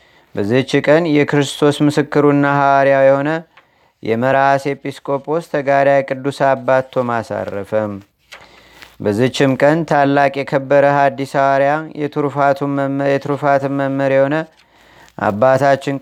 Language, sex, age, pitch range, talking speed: Amharic, male, 30-49, 130-140 Hz, 85 wpm